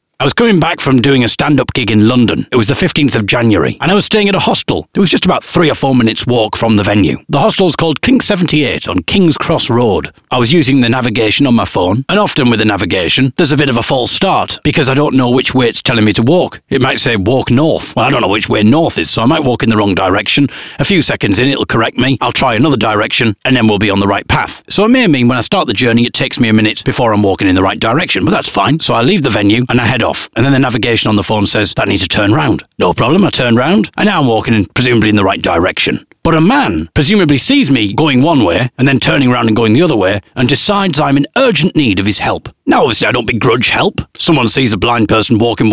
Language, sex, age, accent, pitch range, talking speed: English, male, 40-59, British, 110-155 Hz, 285 wpm